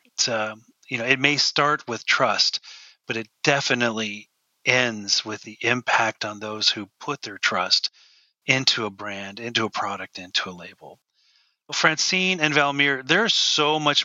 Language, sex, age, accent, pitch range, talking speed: English, male, 40-59, American, 110-135 Hz, 160 wpm